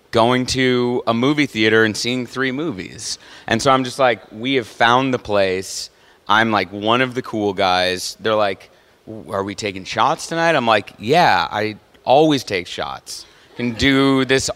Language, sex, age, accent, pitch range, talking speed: English, male, 30-49, American, 100-125 Hz, 175 wpm